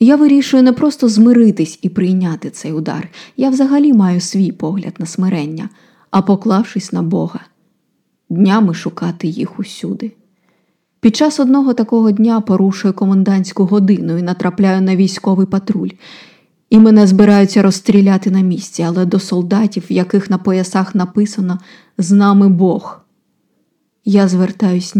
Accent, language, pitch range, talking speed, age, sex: native, Ukrainian, 185-220 Hz, 130 wpm, 20-39, female